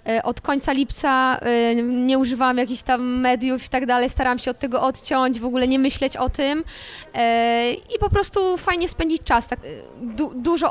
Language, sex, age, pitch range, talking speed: Polish, female, 20-39, 245-280 Hz, 175 wpm